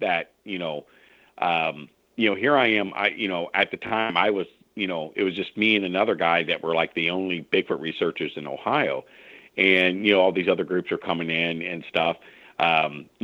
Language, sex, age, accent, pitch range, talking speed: English, male, 50-69, American, 85-100 Hz, 220 wpm